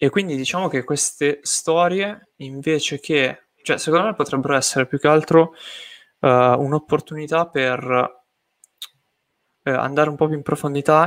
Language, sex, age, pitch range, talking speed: Italian, male, 20-39, 130-150 Hz, 130 wpm